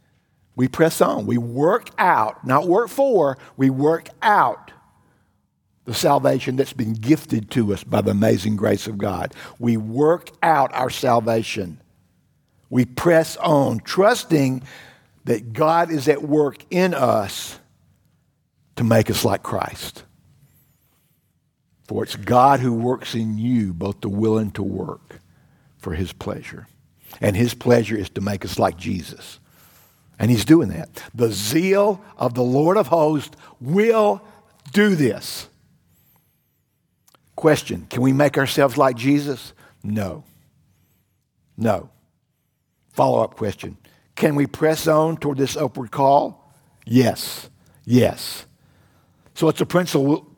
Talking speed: 130 wpm